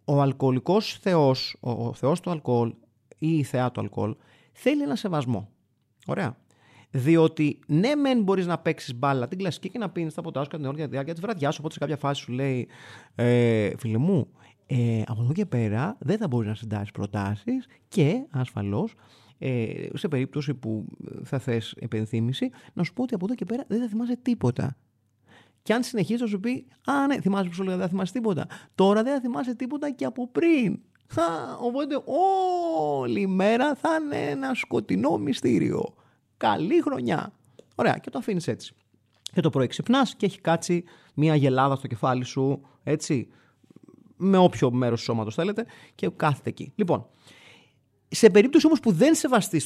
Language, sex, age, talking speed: Greek, male, 30-49, 175 wpm